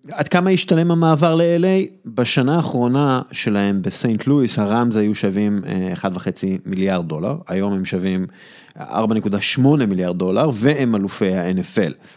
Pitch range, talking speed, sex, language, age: 95-135 Hz, 125 wpm, male, Hebrew, 30-49